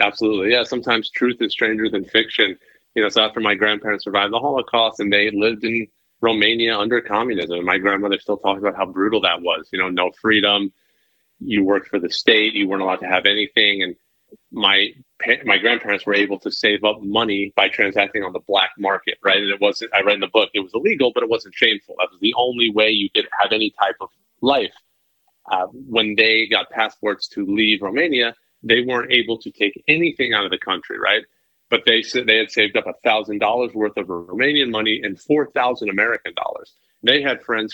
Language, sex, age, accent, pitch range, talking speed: English, male, 30-49, American, 100-110 Hz, 205 wpm